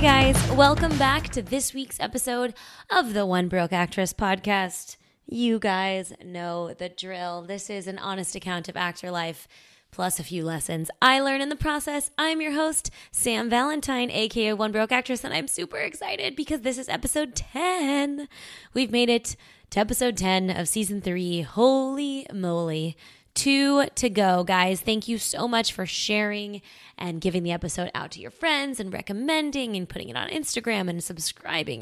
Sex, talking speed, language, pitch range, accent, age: female, 175 wpm, English, 180-250 Hz, American, 20-39